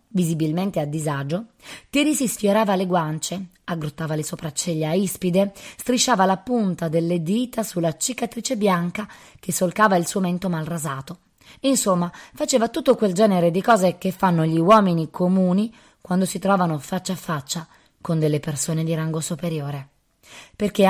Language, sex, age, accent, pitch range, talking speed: Italian, female, 20-39, native, 160-205 Hz, 145 wpm